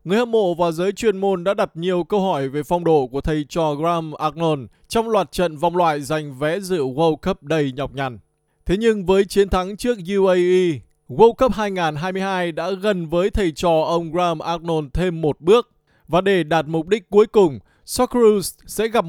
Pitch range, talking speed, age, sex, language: 165-215 Hz, 200 wpm, 20-39, male, Vietnamese